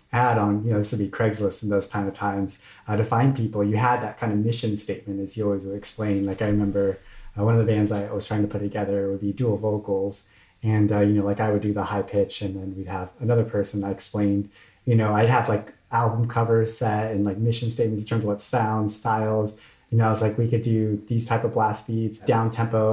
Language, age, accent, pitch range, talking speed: English, 20-39, American, 100-115 Hz, 260 wpm